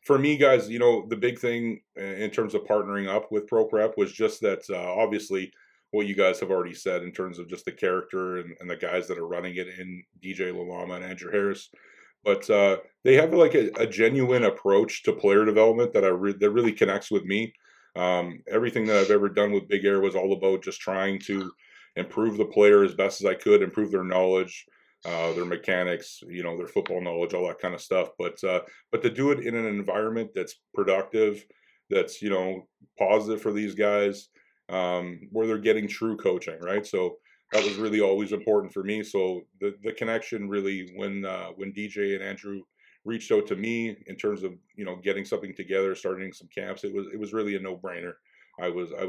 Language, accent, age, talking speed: English, American, 30-49, 215 wpm